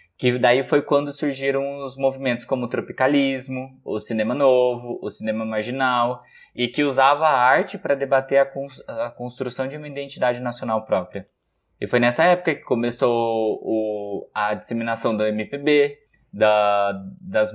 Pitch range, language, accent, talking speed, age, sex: 115-145 Hz, Portuguese, Brazilian, 145 wpm, 20-39, male